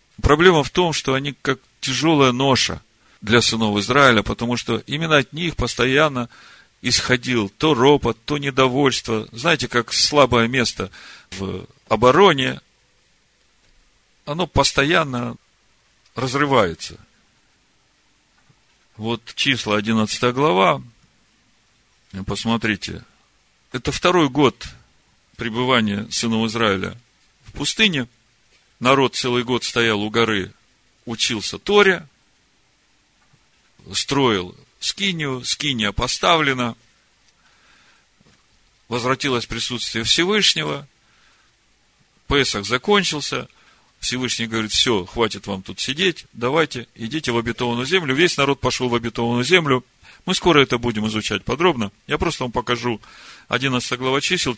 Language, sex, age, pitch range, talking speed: Russian, male, 40-59, 115-135 Hz, 100 wpm